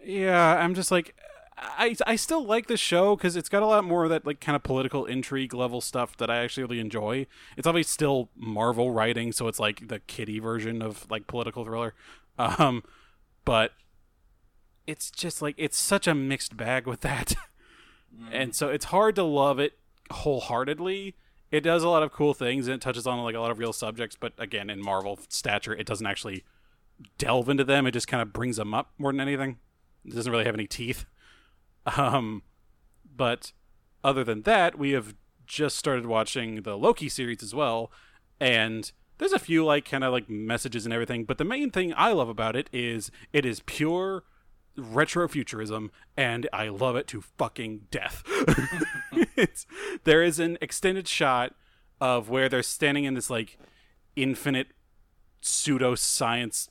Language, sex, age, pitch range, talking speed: English, male, 20-39, 115-155 Hz, 180 wpm